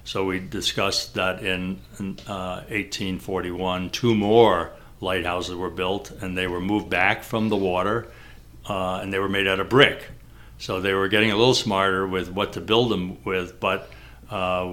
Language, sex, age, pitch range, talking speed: English, male, 60-79, 90-105 Hz, 180 wpm